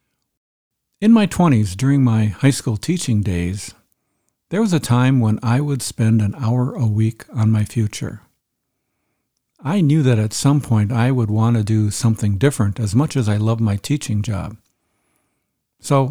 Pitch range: 110-135 Hz